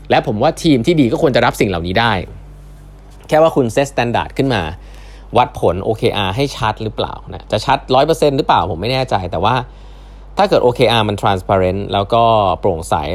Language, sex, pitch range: Thai, male, 95-125 Hz